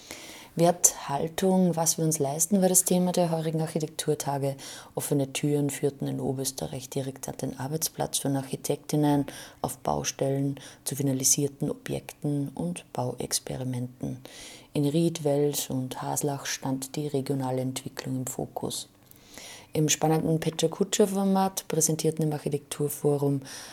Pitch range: 135-160 Hz